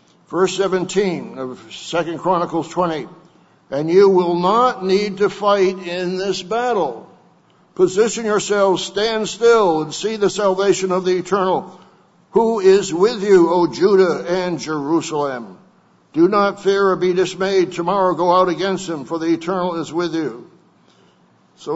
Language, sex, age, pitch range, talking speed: English, male, 60-79, 170-195 Hz, 145 wpm